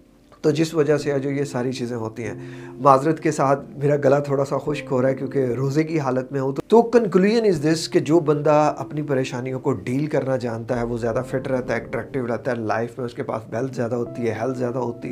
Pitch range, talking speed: 130-160 Hz, 240 wpm